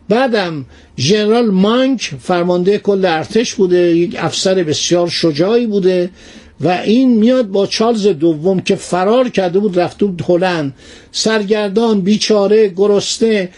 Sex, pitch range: male, 175-220 Hz